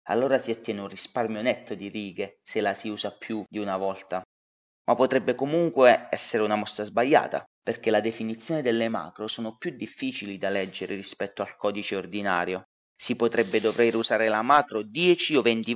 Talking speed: 175 wpm